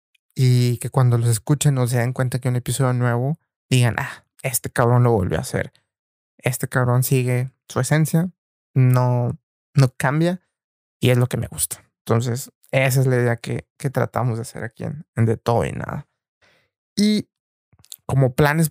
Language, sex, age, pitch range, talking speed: Spanish, male, 20-39, 125-140 Hz, 175 wpm